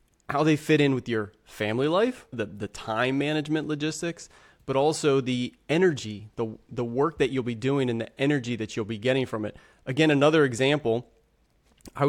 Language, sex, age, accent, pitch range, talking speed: English, male, 30-49, American, 115-150 Hz, 185 wpm